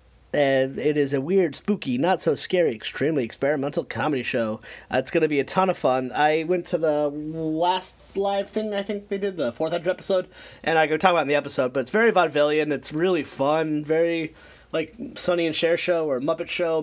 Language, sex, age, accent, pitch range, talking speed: English, male, 30-49, American, 135-160 Hz, 210 wpm